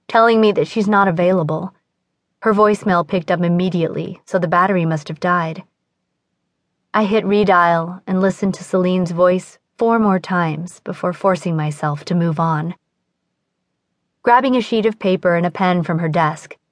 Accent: American